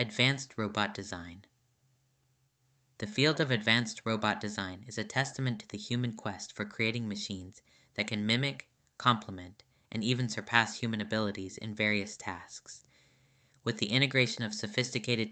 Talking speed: 140 wpm